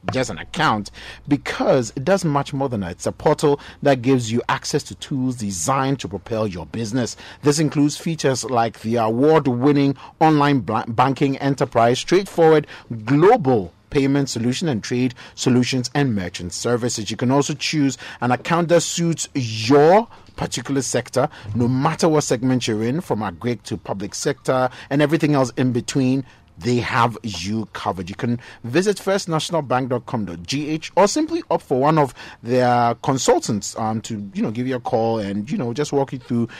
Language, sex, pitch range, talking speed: English, male, 115-145 Hz, 170 wpm